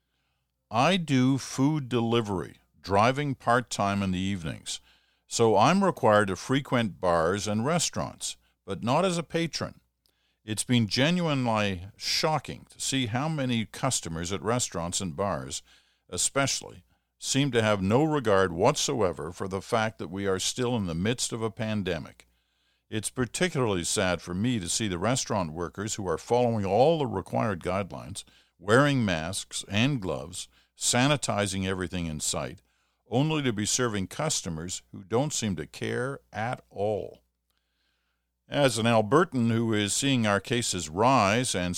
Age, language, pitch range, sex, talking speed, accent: 50-69, English, 90-125 Hz, male, 145 wpm, American